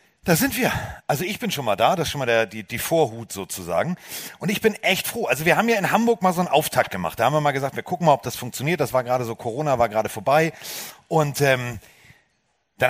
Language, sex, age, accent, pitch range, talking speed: German, male, 40-59, German, 130-195 Hz, 260 wpm